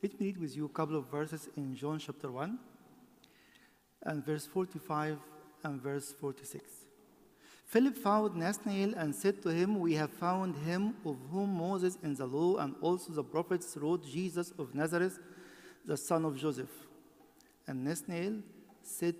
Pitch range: 145-190 Hz